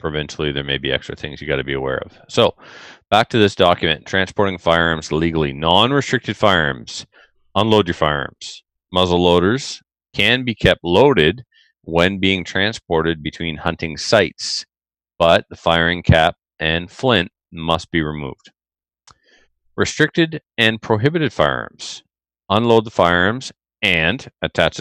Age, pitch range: 40-59, 80-105 Hz